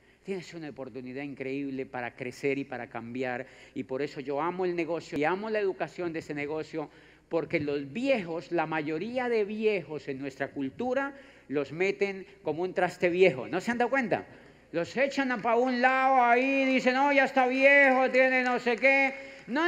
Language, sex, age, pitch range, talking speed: Spanish, male, 50-69, 170-280 Hz, 185 wpm